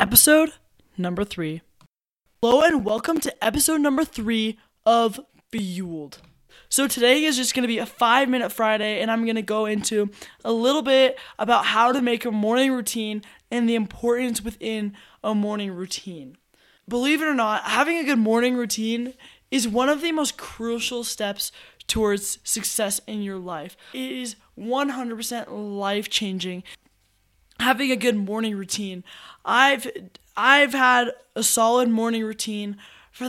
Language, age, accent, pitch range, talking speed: English, 10-29, American, 205-245 Hz, 150 wpm